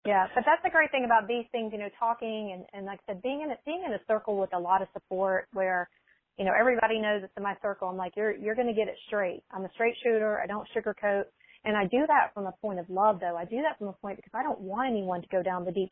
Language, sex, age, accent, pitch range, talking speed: English, female, 30-49, American, 185-225 Hz, 300 wpm